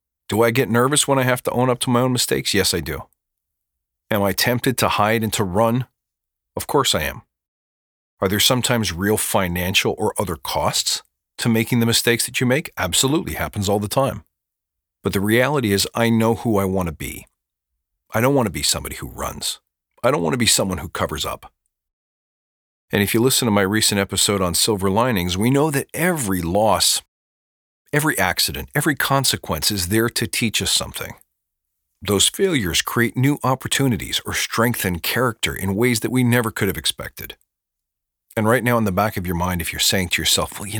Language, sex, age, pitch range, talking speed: English, male, 40-59, 85-120 Hz, 200 wpm